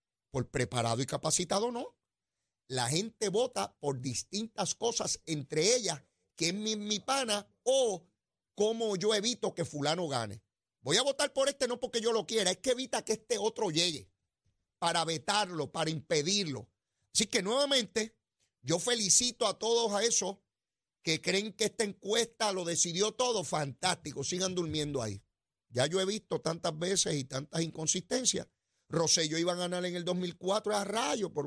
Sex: male